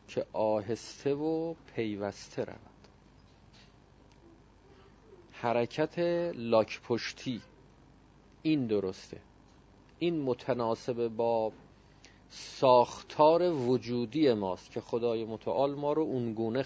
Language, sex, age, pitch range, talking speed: Persian, male, 40-59, 110-140 Hz, 85 wpm